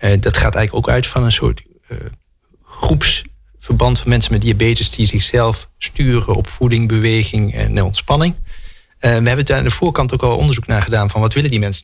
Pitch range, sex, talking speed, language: 105-130 Hz, male, 205 wpm, Dutch